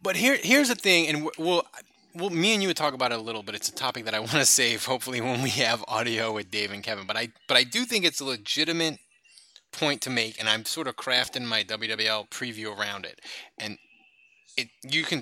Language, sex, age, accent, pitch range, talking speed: English, male, 20-39, American, 125-175 Hz, 245 wpm